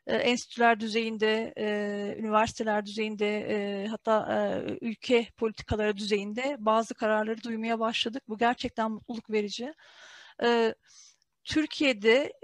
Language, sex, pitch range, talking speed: Turkish, female, 210-250 Hz, 80 wpm